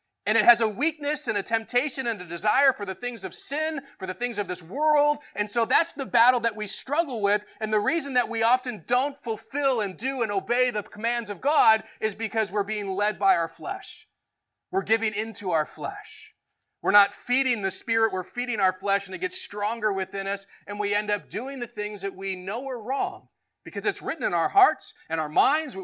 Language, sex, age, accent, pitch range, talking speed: English, male, 30-49, American, 175-250 Hz, 225 wpm